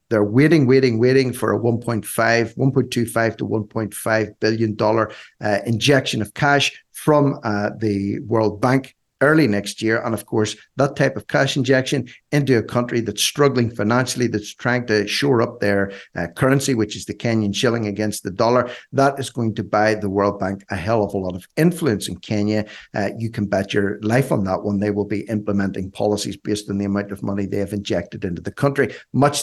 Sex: male